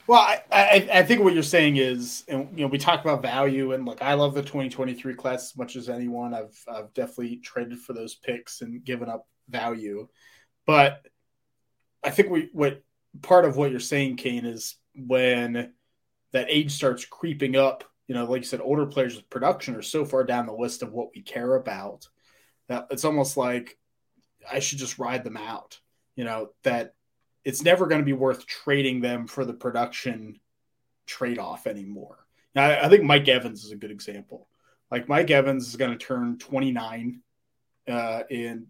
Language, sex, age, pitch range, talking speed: English, male, 20-39, 120-140 Hz, 190 wpm